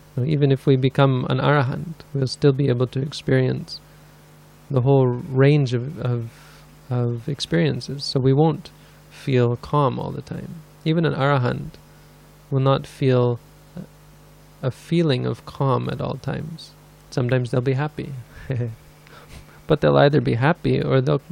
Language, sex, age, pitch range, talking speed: English, male, 20-39, 120-145 Hz, 145 wpm